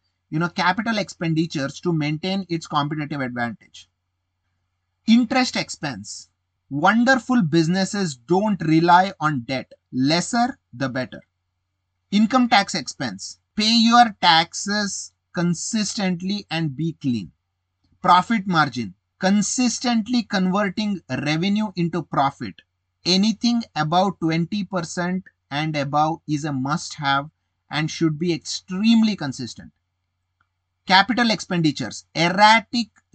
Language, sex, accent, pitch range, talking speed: English, male, Indian, 115-190 Hz, 100 wpm